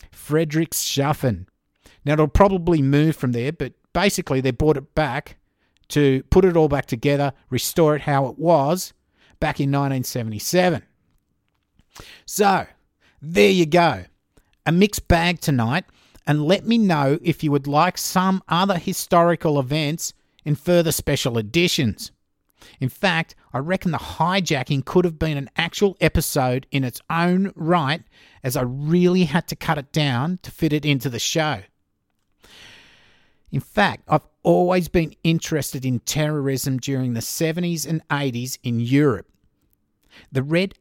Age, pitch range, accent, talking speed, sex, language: 50-69, 130-170 Hz, Australian, 145 wpm, male, English